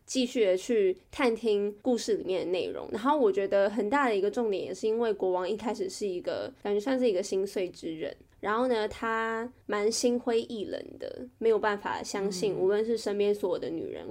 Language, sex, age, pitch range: Chinese, female, 20-39, 205-315 Hz